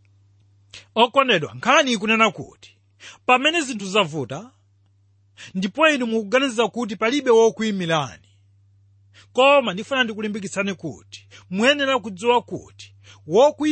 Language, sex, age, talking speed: English, male, 40-59, 105 wpm